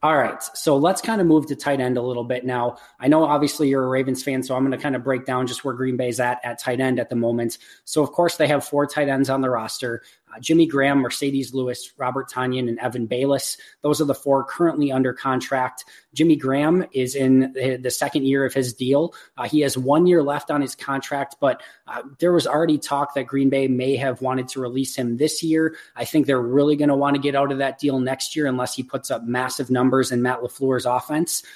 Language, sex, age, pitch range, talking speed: English, male, 20-39, 125-145 Hz, 245 wpm